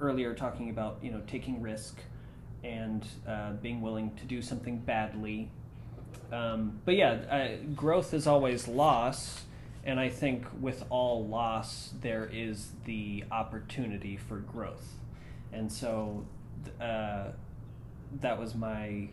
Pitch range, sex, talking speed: 110-125 Hz, male, 130 wpm